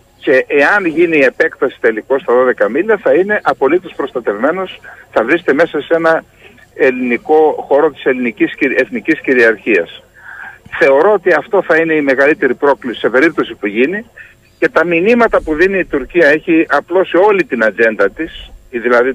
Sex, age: male, 50-69